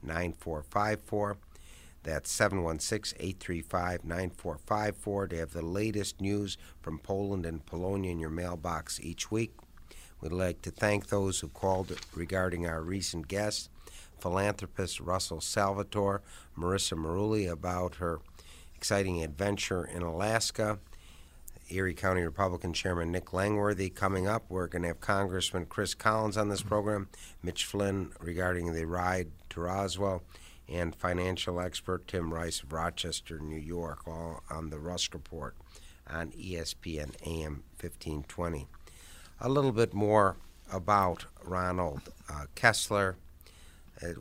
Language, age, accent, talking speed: English, 60-79, American, 125 wpm